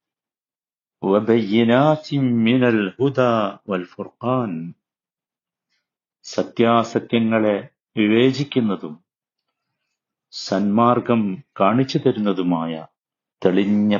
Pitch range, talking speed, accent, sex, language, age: 100-125 Hz, 45 wpm, native, male, Malayalam, 50-69